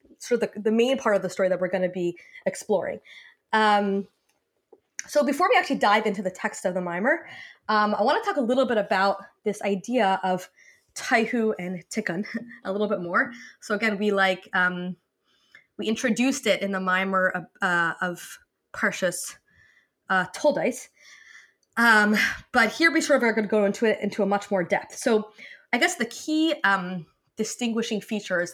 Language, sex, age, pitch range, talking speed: English, female, 20-39, 190-240 Hz, 185 wpm